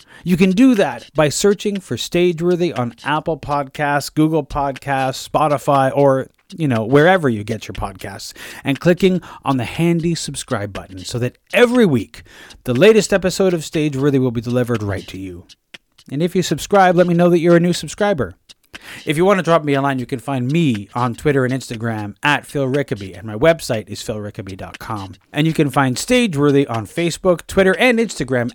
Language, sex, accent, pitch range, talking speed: English, male, American, 120-170 Hz, 190 wpm